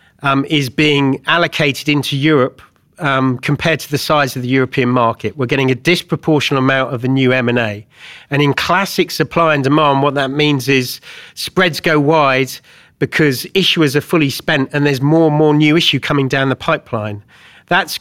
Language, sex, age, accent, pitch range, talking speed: English, male, 40-59, British, 125-150 Hz, 180 wpm